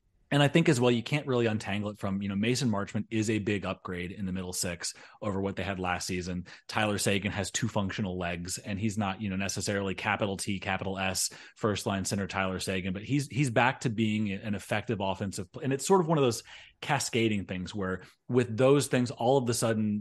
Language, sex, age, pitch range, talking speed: English, male, 30-49, 95-120 Hz, 230 wpm